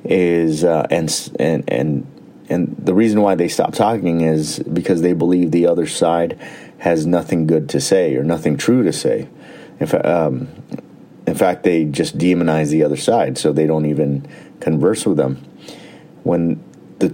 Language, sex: English, male